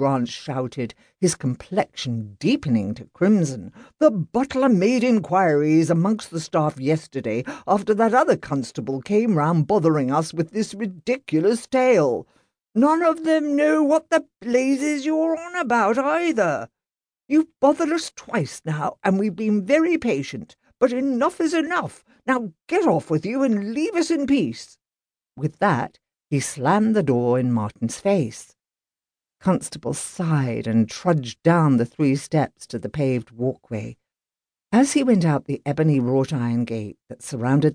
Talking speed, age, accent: 150 wpm, 50-69, British